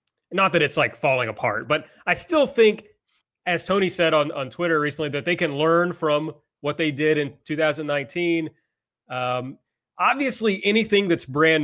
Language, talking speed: English, 165 wpm